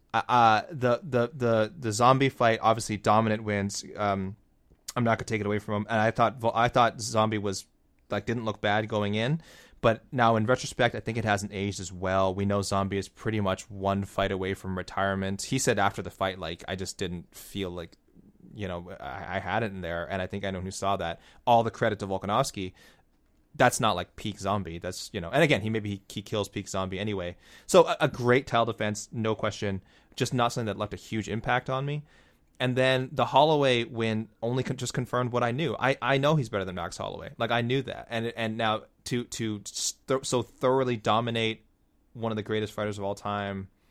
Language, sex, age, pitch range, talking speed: English, male, 20-39, 100-120 Hz, 225 wpm